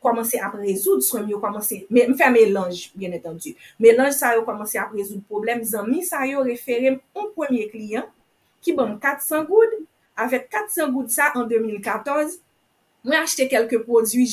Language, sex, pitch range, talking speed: English, female, 215-290 Hz, 165 wpm